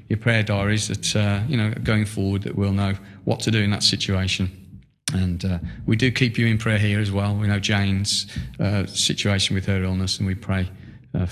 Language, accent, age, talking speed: English, British, 40-59, 215 wpm